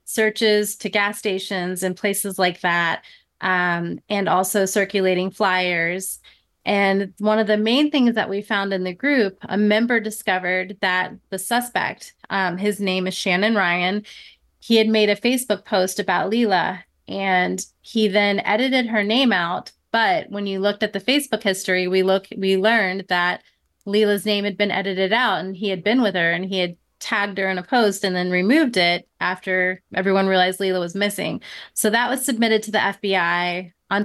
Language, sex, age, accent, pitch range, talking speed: English, female, 30-49, American, 185-210 Hz, 180 wpm